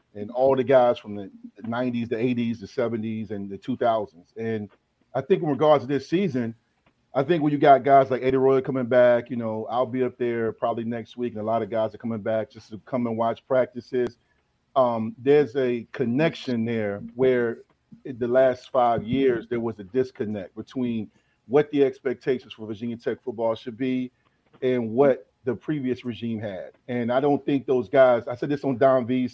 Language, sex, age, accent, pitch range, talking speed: English, male, 40-59, American, 115-130 Hz, 200 wpm